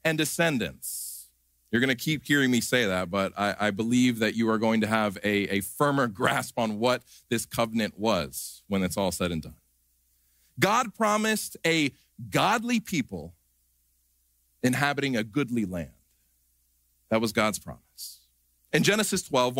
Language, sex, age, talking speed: English, male, 40-59, 155 wpm